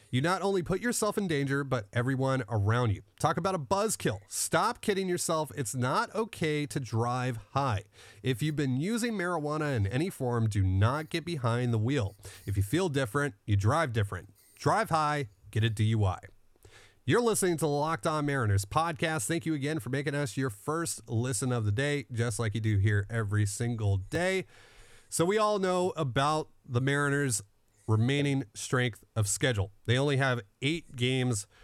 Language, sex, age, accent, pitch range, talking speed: English, male, 30-49, American, 110-150 Hz, 180 wpm